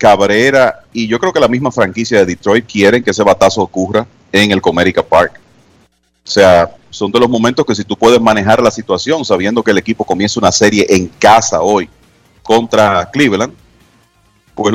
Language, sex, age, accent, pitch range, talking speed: Spanish, male, 40-59, Venezuelan, 95-120 Hz, 185 wpm